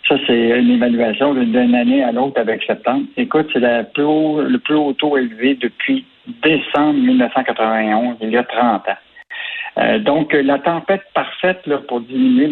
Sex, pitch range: male, 125-185 Hz